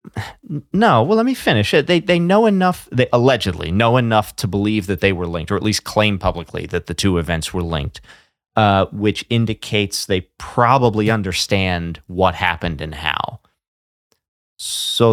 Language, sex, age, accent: English, male, 30-49, American